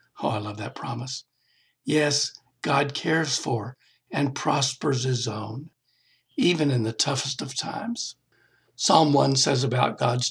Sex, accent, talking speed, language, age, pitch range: male, American, 140 wpm, English, 60-79, 125-150 Hz